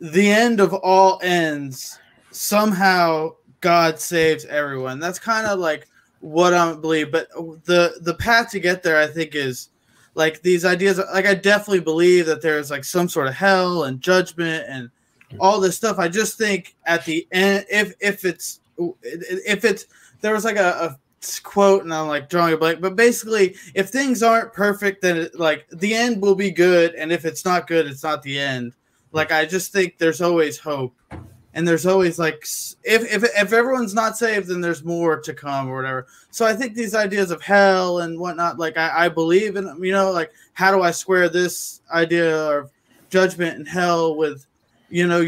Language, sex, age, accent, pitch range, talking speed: English, male, 20-39, American, 155-195 Hz, 195 wpm